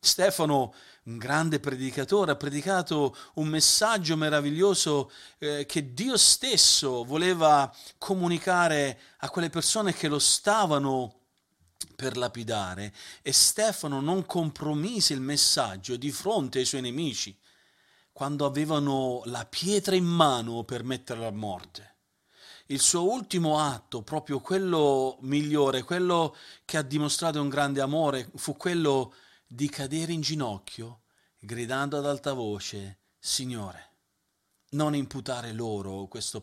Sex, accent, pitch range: male, native, 120-160 Hz